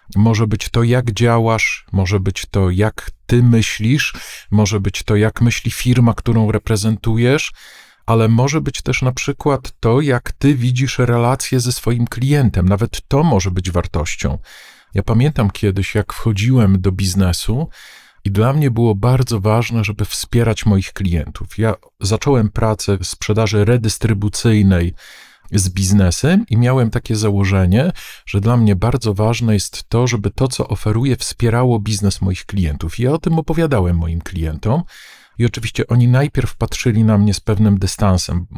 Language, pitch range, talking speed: Polish, 100-130 Hz, 150 wpm